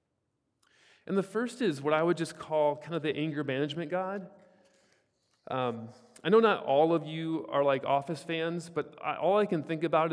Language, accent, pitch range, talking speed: English, American, 140-170 Hz, 190 wpm